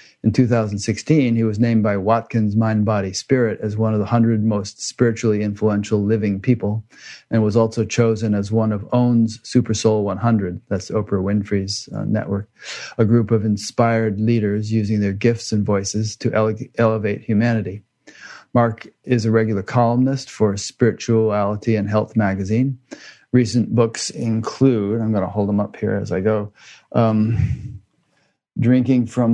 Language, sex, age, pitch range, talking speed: English, male, 40-59, 105-120 Hz, 155 wpm